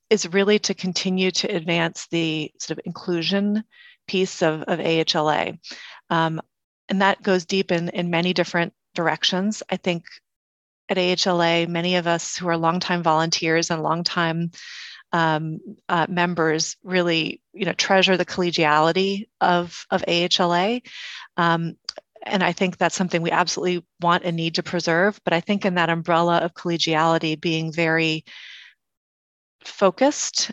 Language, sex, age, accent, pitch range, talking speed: English, female, 30-49, American, 165-190 Hz, 145 wpm